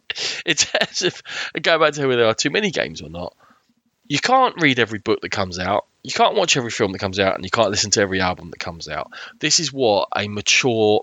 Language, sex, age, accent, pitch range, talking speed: English, male, 20-39, British, 95-120 Hz, 250 wpm